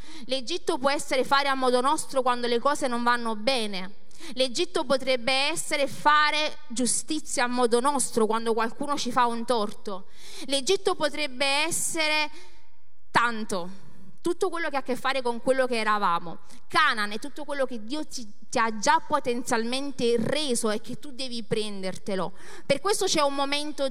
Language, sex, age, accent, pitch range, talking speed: Italian, female, 30-49, native, 225-295 Hz, 160 wpm